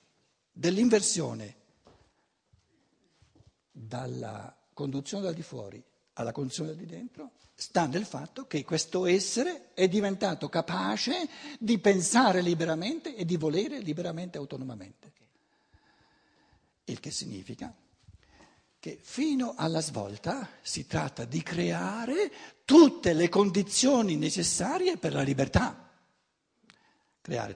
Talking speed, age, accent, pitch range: 105 wpm, 60-79, native, 135-220 Hz